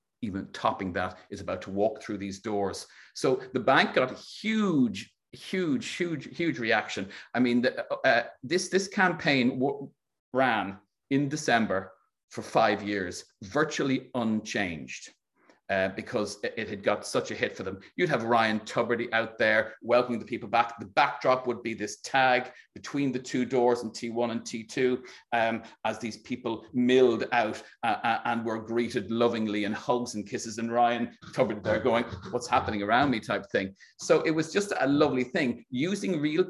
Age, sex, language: 40-59, male, English